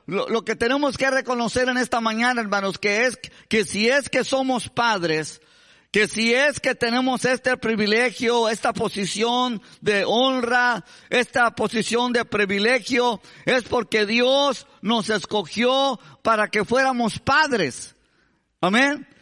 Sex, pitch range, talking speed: male, 230-280 Hz, 130 wpm